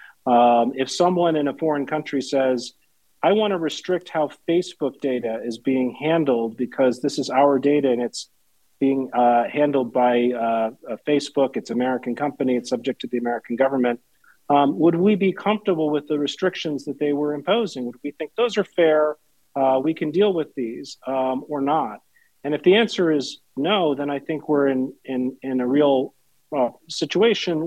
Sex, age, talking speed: male, 40-59, 185 wpm